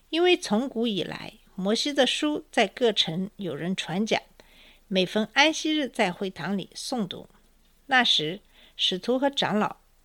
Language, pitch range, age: Chinese, 195-250 Hz, 50-69